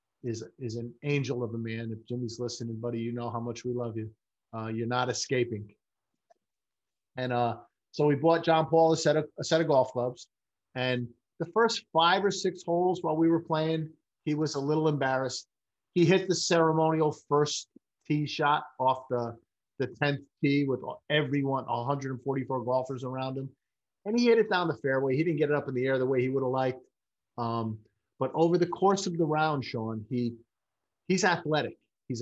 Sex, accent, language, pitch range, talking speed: male, American, English, 120-150 Hz, 195 wpm